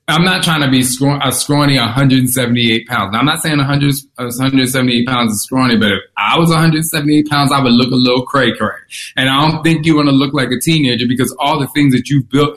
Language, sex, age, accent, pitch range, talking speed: English, male, 30-49, American, 115-160 Hz, 235 wpm